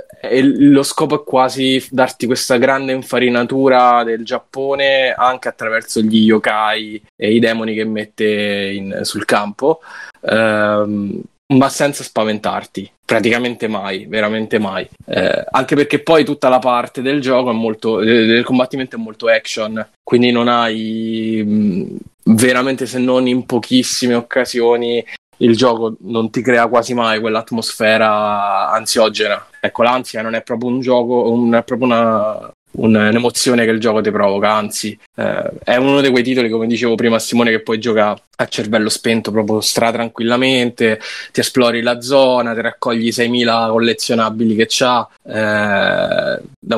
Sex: male